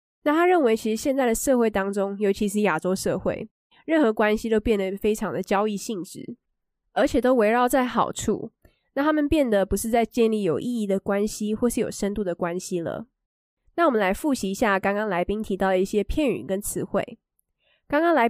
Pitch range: 195-255 Hz